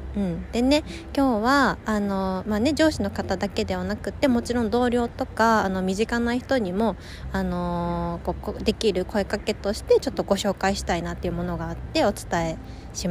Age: 20-39